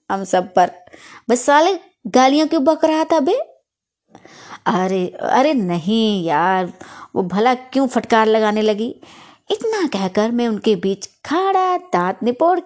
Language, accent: Hindi, native